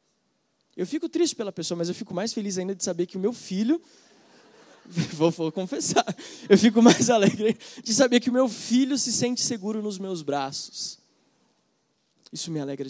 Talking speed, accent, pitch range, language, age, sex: 180 wpm, Brazilian, 165-215 Hz, Portuguese, 20-39, male